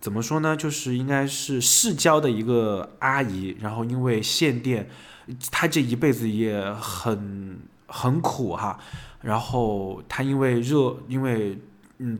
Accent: native